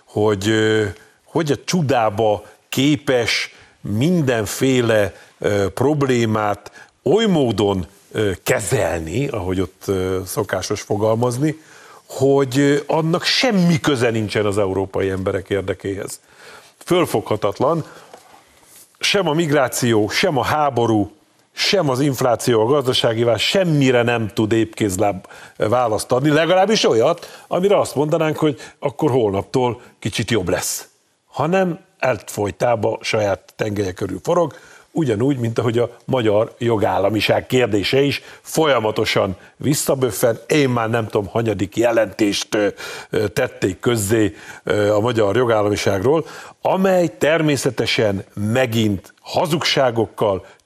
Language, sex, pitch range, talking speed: Hungarian, male, 105-145 Hz, 95 wpm